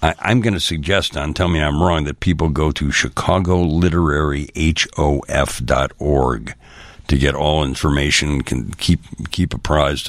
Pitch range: 65-85 Hz